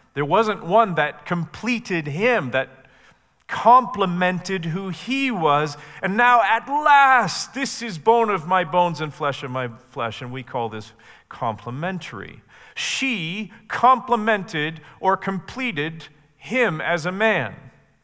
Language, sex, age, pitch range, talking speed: English, male, 40-59, 130-195 Hz, 130 wpm